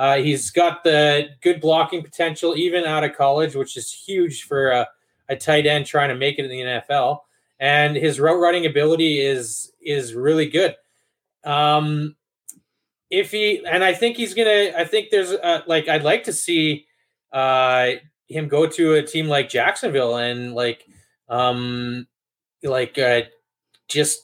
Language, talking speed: English, 165 wpm